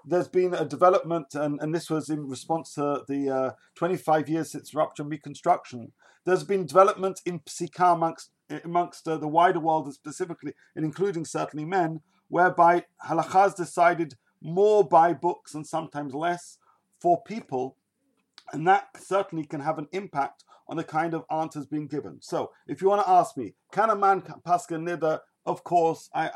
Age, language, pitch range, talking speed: 40-59, English, 150-180 Hz, 170 wpm